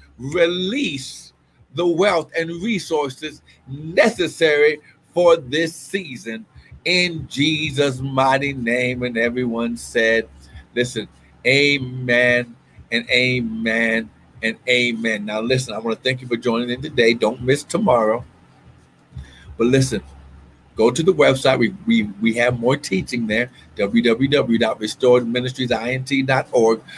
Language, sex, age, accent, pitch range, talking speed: English, male, 50-69, American, 125-190 Hz, 110 wpm